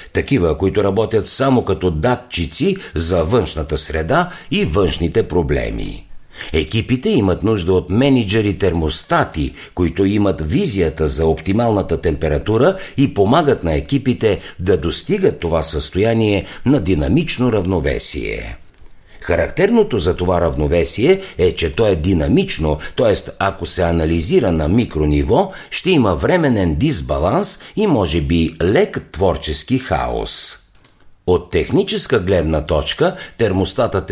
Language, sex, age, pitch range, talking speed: Bulgarian, male, 60-79, 80-115 Hz, 115 wpm